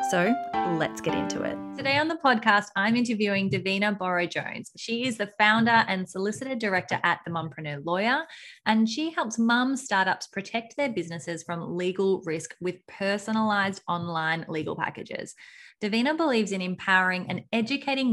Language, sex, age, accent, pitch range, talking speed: English, female, 20-39, Australian, 175-230 Hz, 155 wpm